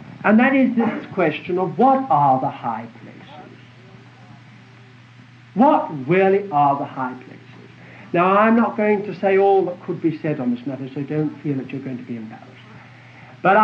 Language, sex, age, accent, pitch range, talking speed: English, male, 60-79, British, 135-215 Hz, 180 wpm